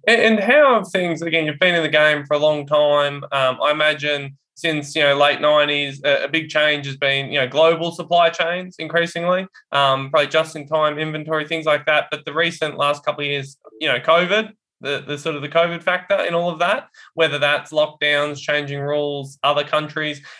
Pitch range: 150-175 Hz